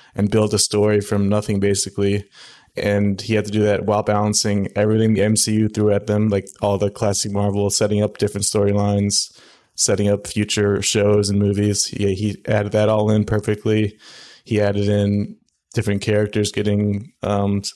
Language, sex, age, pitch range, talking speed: English, male, 20-39, 100-105 Hz, 170 wpm